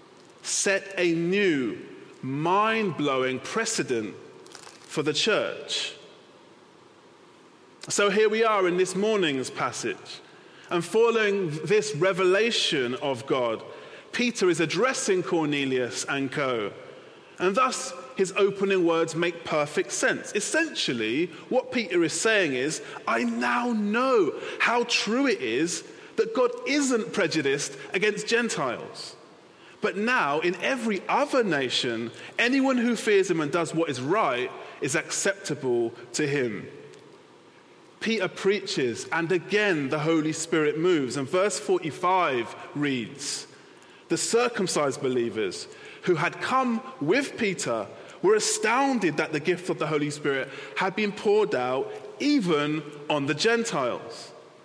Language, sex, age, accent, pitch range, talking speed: English, male, 30-49, British, 155-255 Hz, 120 wpm